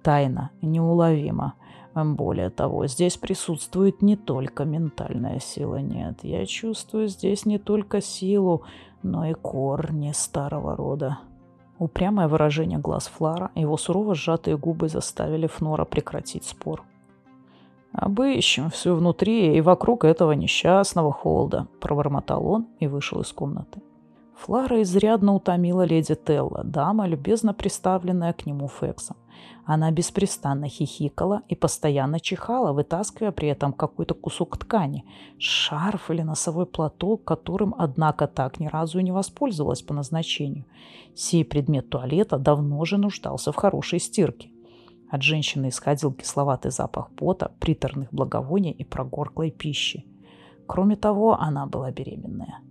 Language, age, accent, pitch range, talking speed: Russian, 30-49, native, 140-185 Hz, 125 wpm